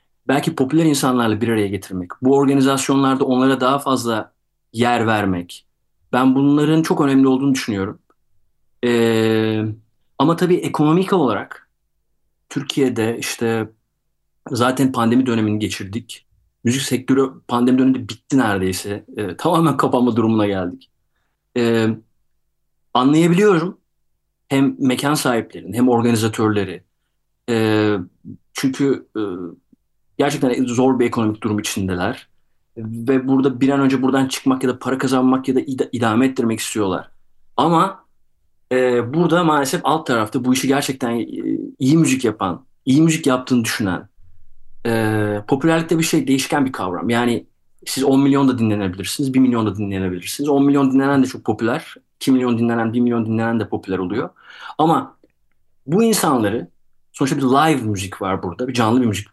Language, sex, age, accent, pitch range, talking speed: Turkish, male, 40-59, native, 110-135 Hz, 135 wpm